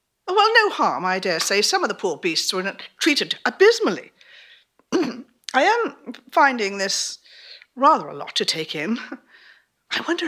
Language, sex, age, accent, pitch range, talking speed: English, female, 60-79, British, 215-320 Hz, 150 wpm